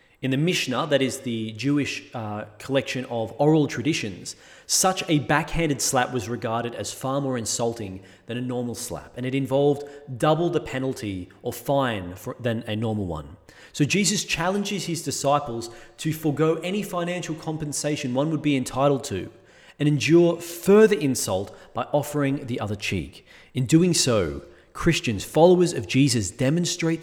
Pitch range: 115-150 Hz